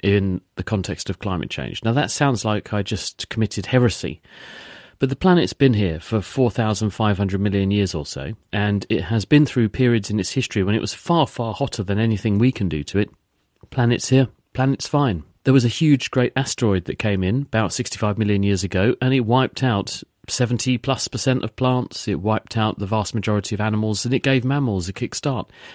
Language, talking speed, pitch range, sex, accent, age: English, 205 wpm, 100-125 Hz, male, British, 40-59